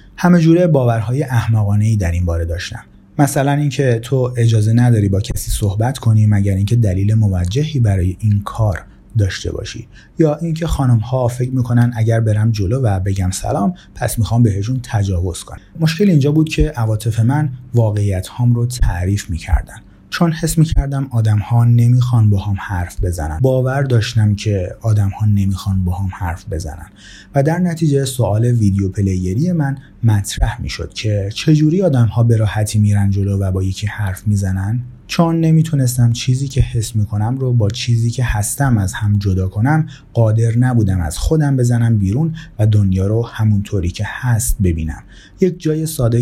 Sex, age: male, 30-49